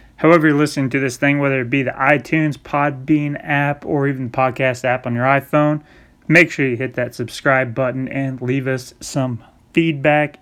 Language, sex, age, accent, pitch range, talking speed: English, male, 30-49, American, 130-155 Hz, 190 wpm